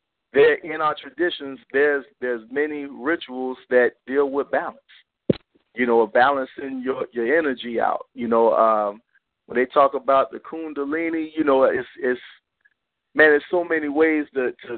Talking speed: 160 wpm